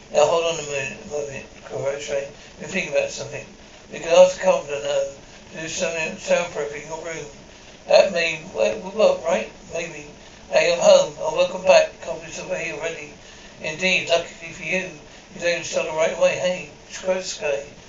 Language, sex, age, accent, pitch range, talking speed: English, male, 60-79, British, 155-190 Hz, 180 wpm